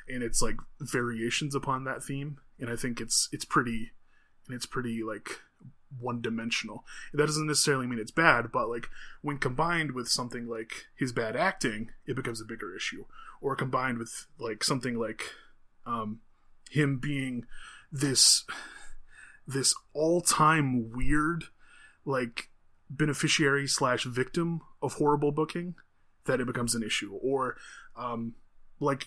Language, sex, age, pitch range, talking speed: English, male, 20-39, 120-145 Hz, 140 wpm